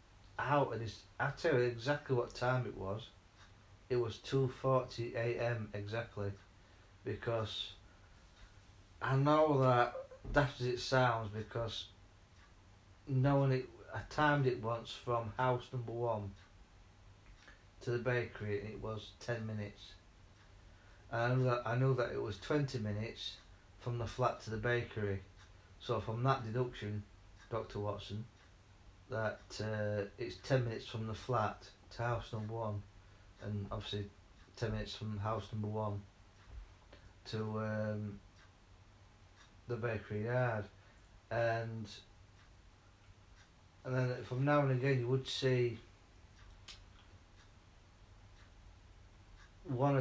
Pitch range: 100-120 Hz